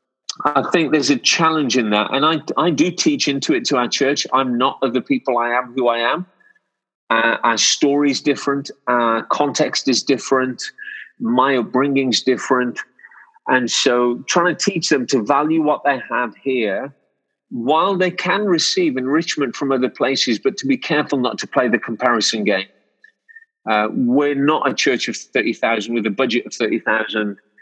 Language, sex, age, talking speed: English, male, 40-59, 175 wpm